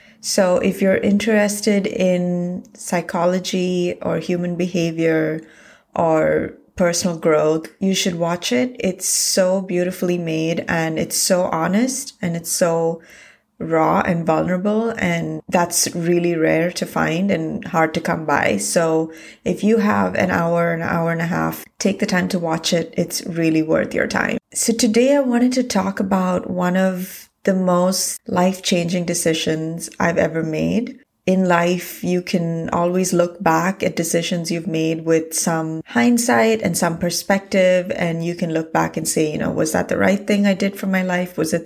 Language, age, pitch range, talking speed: English, 30-49, 165-195 Hz, 170 wpm